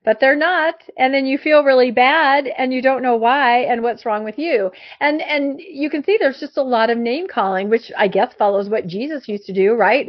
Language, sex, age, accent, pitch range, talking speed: English, female, 40-59, American, 210-275 Hz, 245 wpm